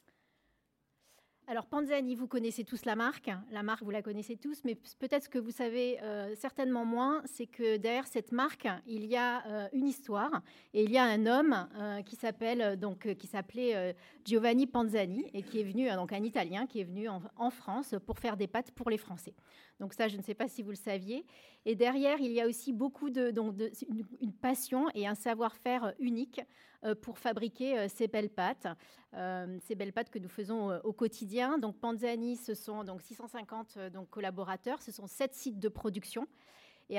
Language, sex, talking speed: French, female, 205 wpm